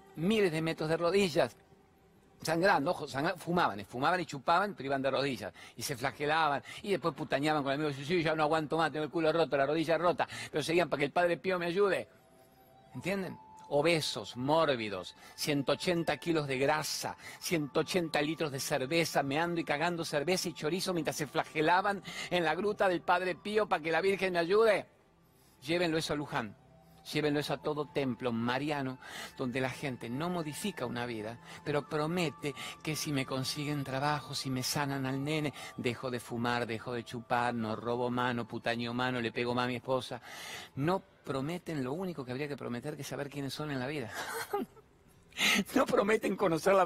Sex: male